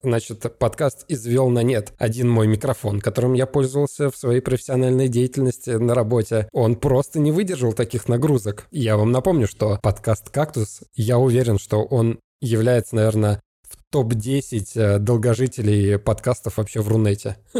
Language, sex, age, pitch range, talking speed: Russian, male, 20-39, 110-135 Hz, 145 wpm